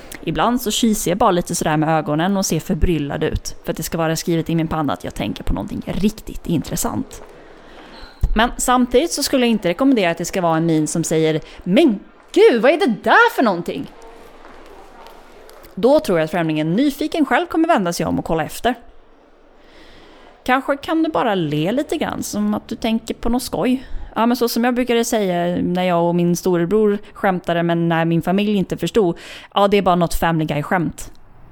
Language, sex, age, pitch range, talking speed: Swedish, female, 30-49, 170-275 Hz, 200 wpm